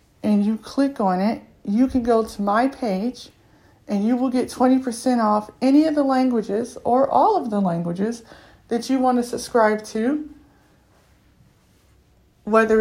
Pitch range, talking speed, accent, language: 200-250 Hz, 155 wpm, American, English